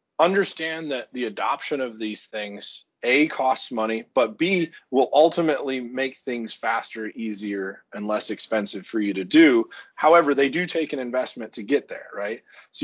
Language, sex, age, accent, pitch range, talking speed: English, male, 30-49, American, 110-145 Hz, 170 wpm